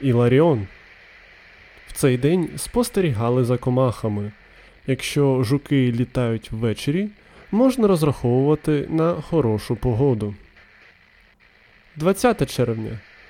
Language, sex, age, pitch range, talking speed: Ukrainian, male, 20-39, 125-165 Hz, 75 wpm